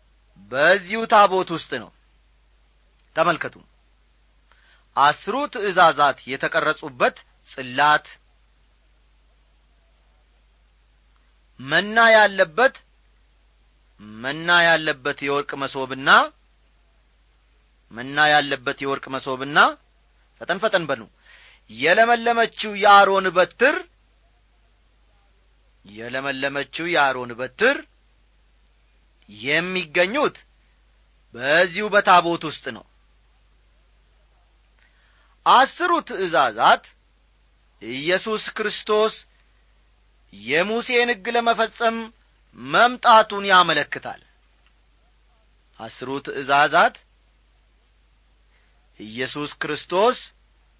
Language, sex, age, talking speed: Amharic, male, 40-59, 50 wpm